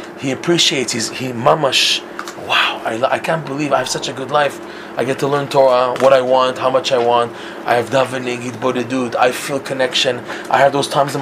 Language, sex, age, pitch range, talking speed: English, male, 20-39, 135-170 Hz, 205 wpm